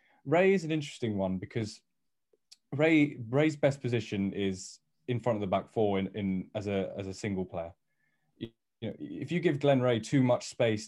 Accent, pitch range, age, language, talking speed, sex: British, 95-115 Hz, 10-29, English, 195 wpm, male